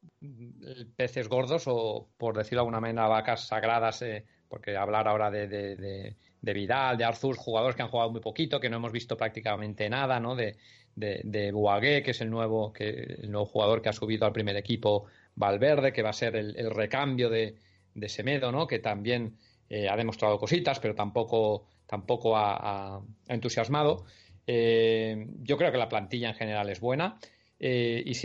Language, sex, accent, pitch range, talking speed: Spanish, male, Spanish, 105-125 Hz, 190 wpm